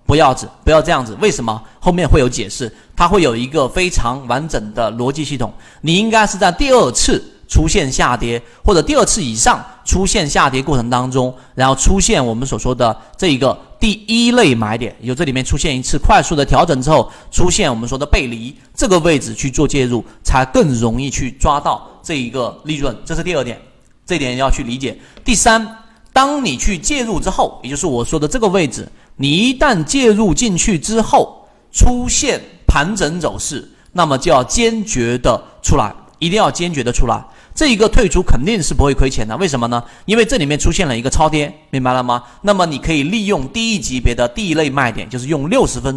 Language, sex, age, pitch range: Chinese, male, 30-49, 120-195 Hz